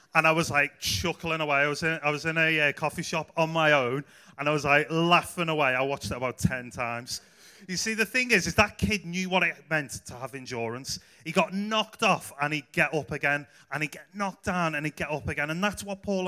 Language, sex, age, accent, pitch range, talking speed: English, male, 30-49, British, 130-175 Hz, 245 wpm